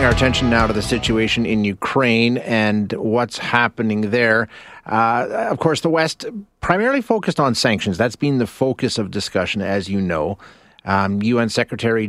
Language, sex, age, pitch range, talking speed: English, male, 30-49, 100-120 Hz, 165 wpm